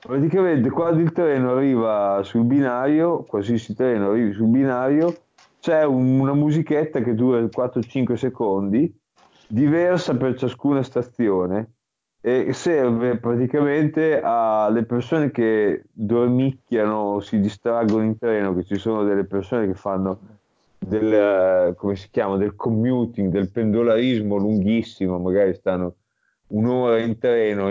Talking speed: 120 wpm